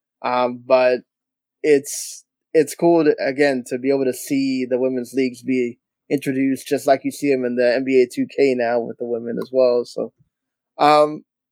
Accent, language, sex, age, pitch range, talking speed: American, English, male, 20-39, 125-155 Hz, 170 wpm